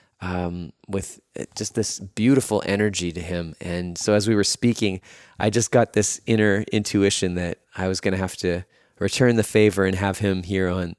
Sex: male